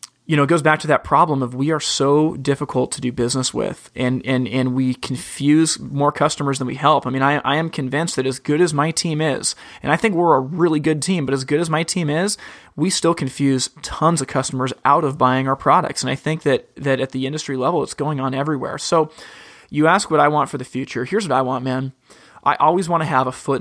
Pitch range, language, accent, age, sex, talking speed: 135-155 Hz, English, American, 30-49, male, 250 wpm